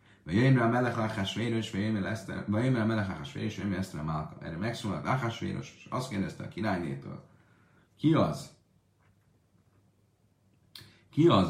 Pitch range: 90-115 Hz